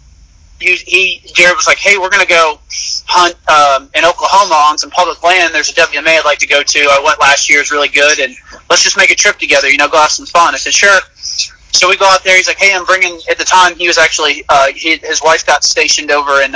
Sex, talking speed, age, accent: male, 255 wpm, 30-49, American